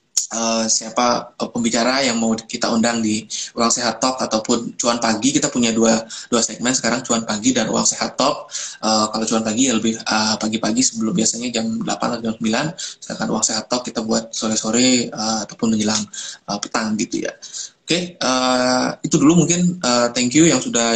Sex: male